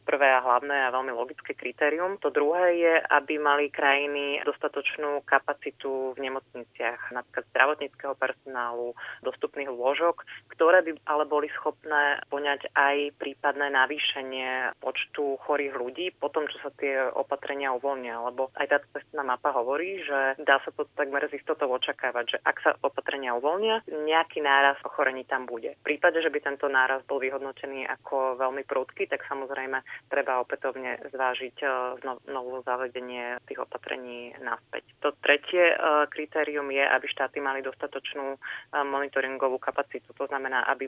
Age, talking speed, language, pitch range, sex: 30-49, 145 wpm, Slovak, 130-145 Hz, female